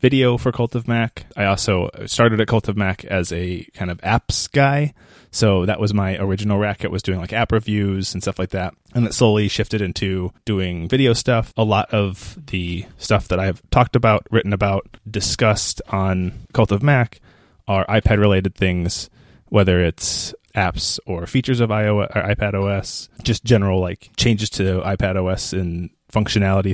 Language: English